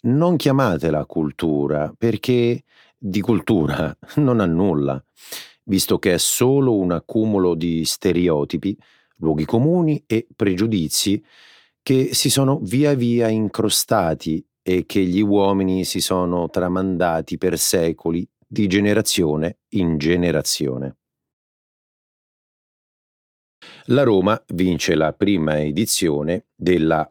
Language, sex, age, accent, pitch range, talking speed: Italian, male, 40-59, native, 80-110 Hz, 105 wpm